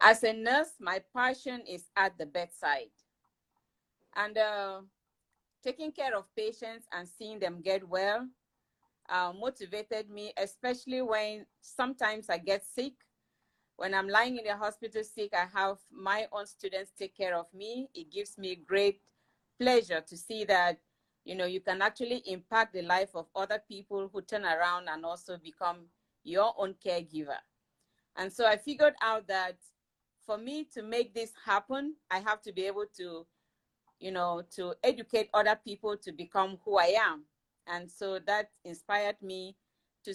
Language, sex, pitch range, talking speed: English, female, 185-225 Hz, 160 wpm